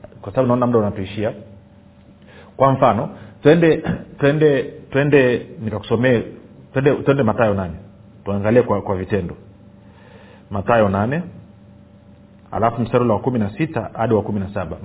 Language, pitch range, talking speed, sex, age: Swahili, 105-145 Hz, 105 wpm, male, 40-59